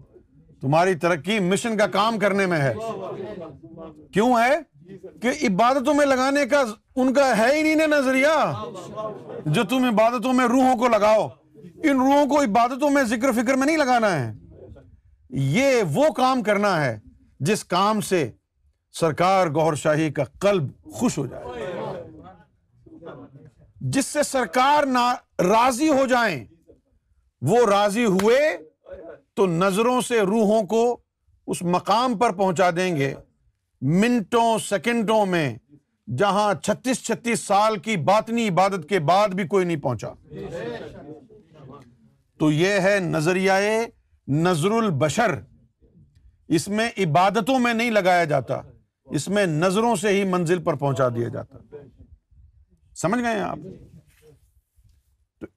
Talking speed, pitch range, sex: 130 wpm, 150-235 Hz, male